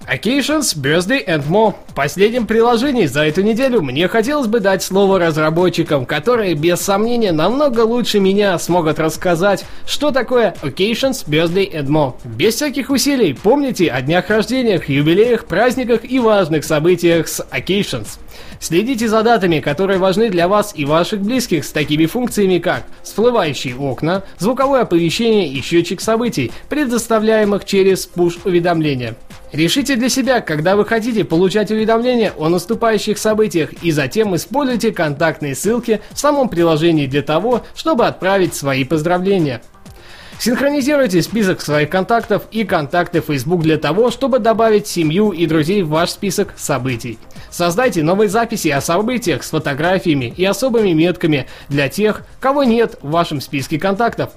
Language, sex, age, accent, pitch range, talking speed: Russian, male, 20-39, native, 160-225 Hz, 140 wpm